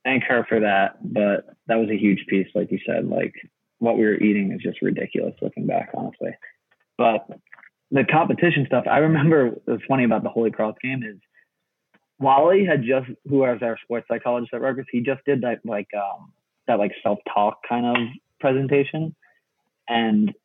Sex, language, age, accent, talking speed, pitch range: male, English, 20-39, American, 180 wpm, 105-130 Hz